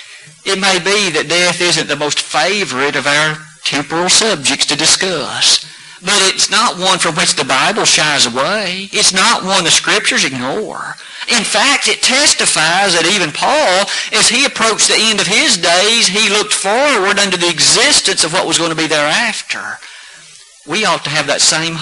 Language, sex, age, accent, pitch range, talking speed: English, male, 50-69, American, 145-195 Hz, 180 wpm